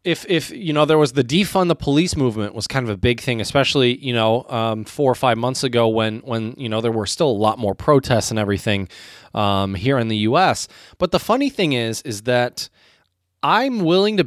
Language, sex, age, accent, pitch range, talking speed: English, male, 20-39, American, 120-200 Hz, 225 wpm